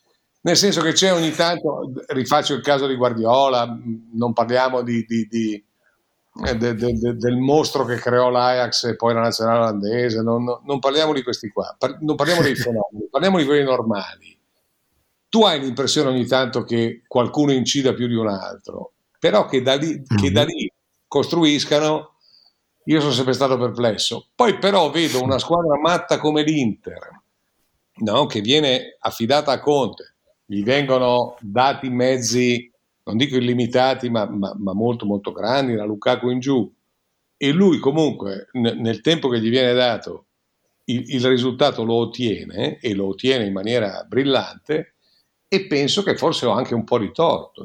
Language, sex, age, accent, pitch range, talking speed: Italian, male, 50-69, native, 115-140 Hz, 160 wpm